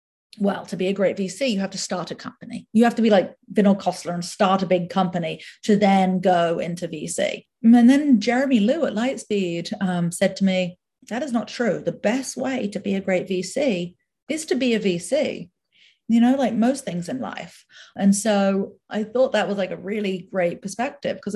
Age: 40-59